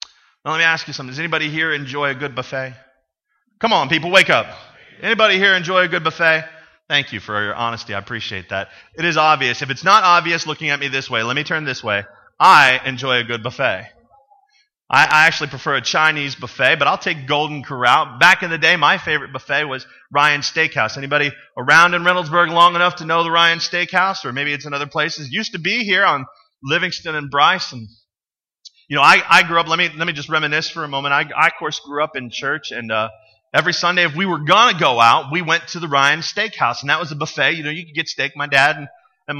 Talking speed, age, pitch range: 240 wpm, 30-49, 135-175 Hz